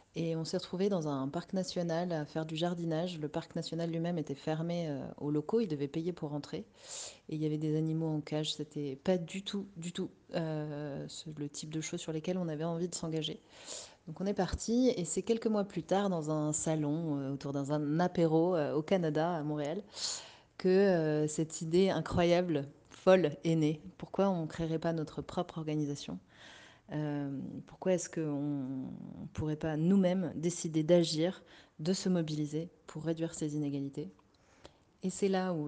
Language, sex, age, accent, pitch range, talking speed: French, female, 30-49, French, 150-180 Hz, 185 wpm